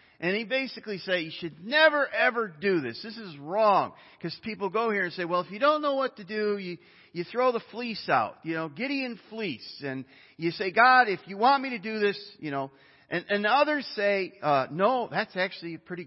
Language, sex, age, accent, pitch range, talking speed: English, male, 40-59, American, 150-220 Hz, 225 wpm